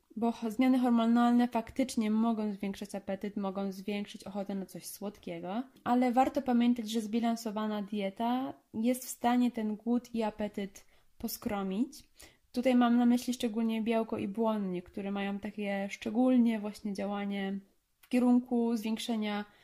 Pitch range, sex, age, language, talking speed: 205-240 Hz, female, 20-39, Polish, 135 wpm